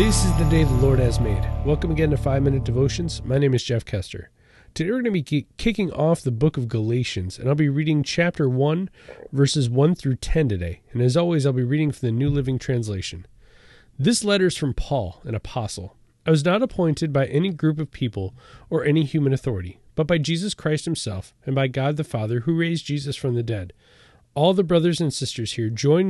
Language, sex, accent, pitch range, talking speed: English, male, American, 120-160 Hz, 215 wpm